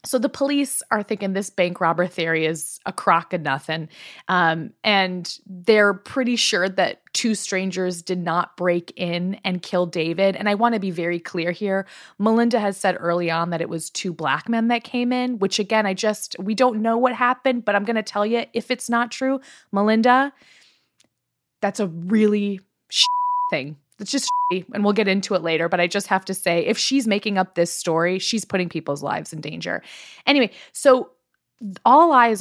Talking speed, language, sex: 200 wpm, English, female